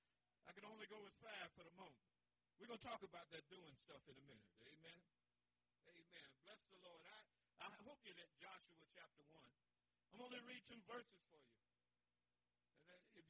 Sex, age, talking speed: male, 50-69, 185 wpm